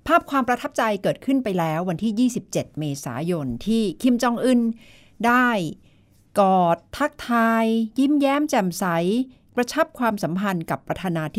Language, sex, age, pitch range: Thai, female, 60-79, 160-225 Hz